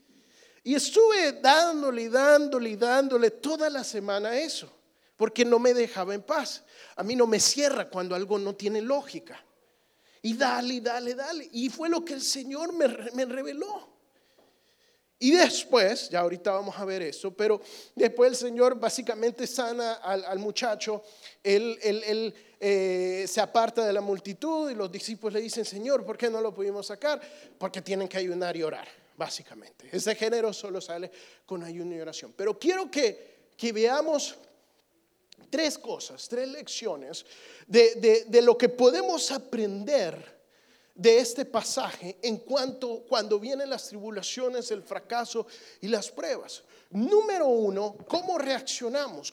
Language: Spanish